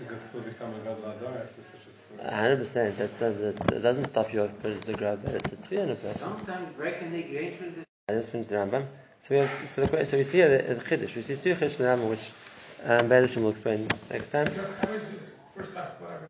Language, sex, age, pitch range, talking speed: English, male, 20-39, 115-145 Hz, 190 wpm